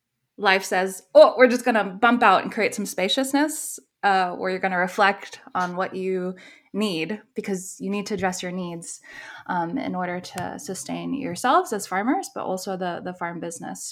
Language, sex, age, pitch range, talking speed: English, female, 20-39, 175-230 Hz, 190 wpm